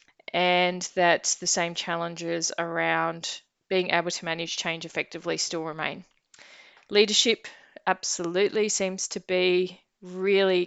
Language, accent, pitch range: English, Australian, 175-195 Hz